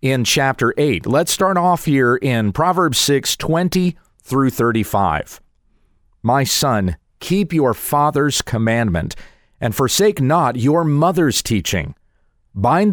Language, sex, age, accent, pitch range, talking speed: English, male, 40-59, American, 105-165 Hz, 120 wpm